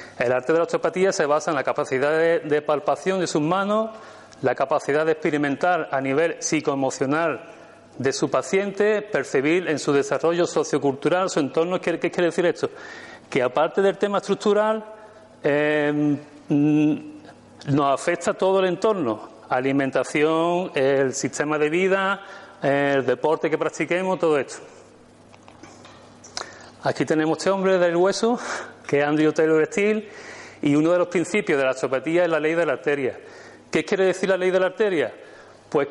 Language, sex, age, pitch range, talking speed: Spanish, male, 40-59, 145-195 Hz, 155 wpm